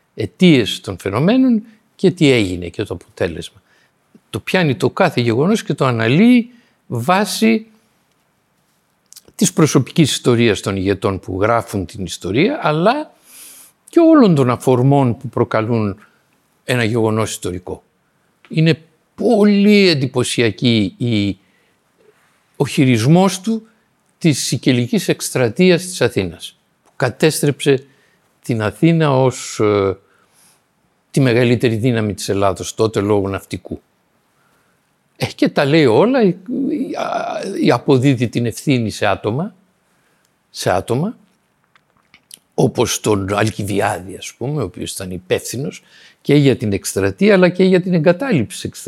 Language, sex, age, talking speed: Greek, male, 60-79, 115 wpm